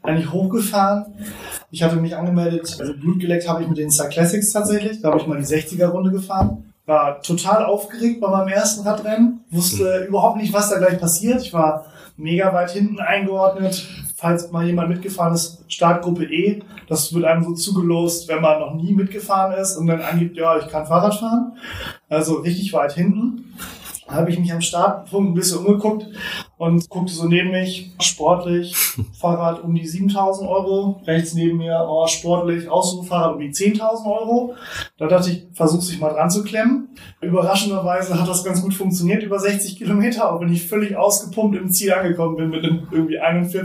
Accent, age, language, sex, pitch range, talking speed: German, 30-49, German, male, 165-195 Hz, 180 wpm